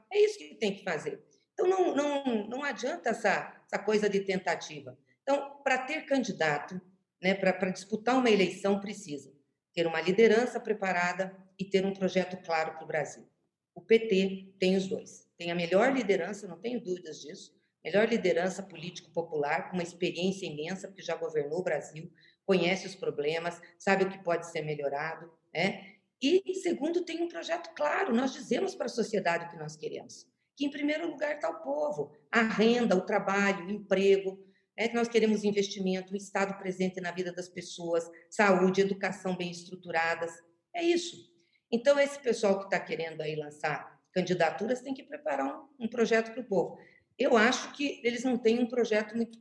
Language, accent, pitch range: Portuguese, Brazilian, 170-230 Hz